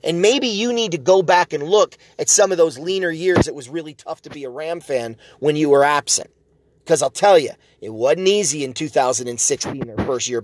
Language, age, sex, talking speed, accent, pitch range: English, 30-49, male, 230 wpm, American, 140-185 Hz